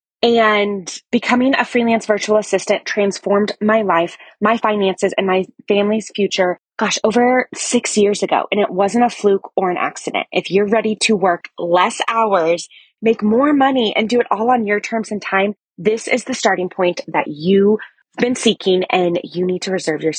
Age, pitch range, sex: 20-39, 190-235 Hz, female